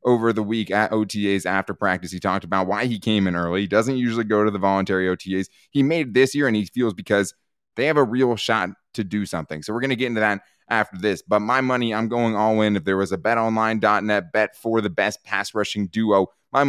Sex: male